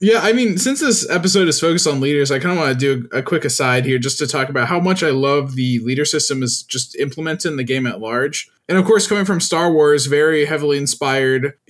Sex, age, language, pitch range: male, 20-39, English, 130-165 Hz